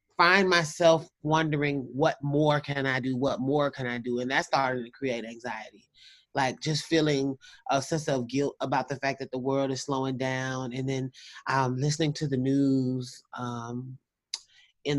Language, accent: English, American